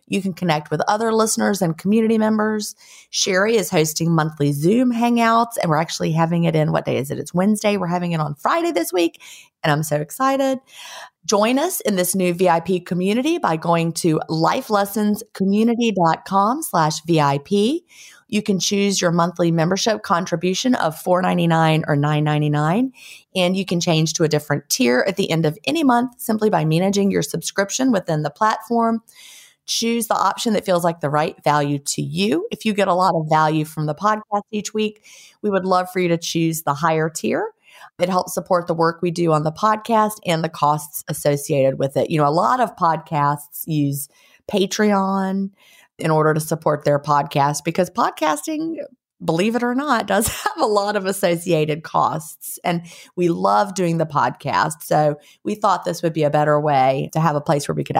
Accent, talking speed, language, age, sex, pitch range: American, 190 wpm, English, 30-49, female, 155-210 Hz